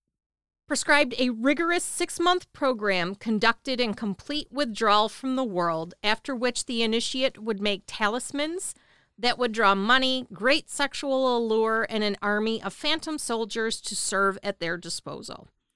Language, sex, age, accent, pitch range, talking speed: English, female, 40-59, American, 195-260 Hz, 140 wpm